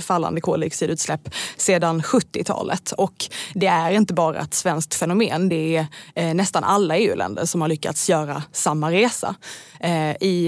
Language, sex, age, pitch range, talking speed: Swedish, female, 20-39, 165-195 Hz, 135 wpm